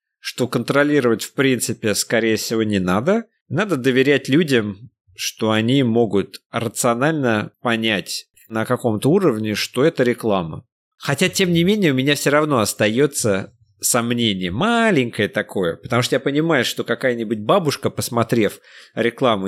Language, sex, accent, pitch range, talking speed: Russian, male, native, 105-140 Hz, 140 wpm